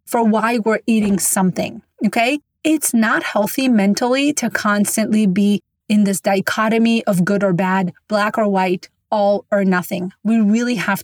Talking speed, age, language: 160 wpm, 30-49, English